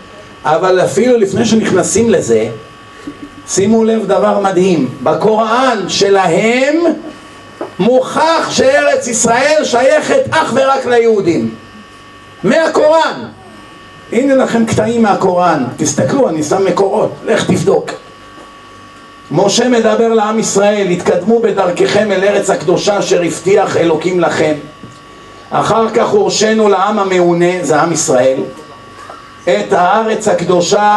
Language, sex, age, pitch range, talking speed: Hebrew, male, 50-69, 180-235 Hz, 105 wpm